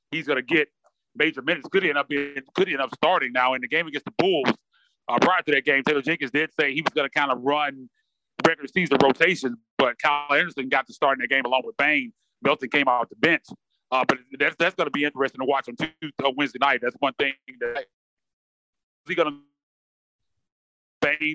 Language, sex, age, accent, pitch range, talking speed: English, male, 30-49, American, 130-160 Hz, 225 wpm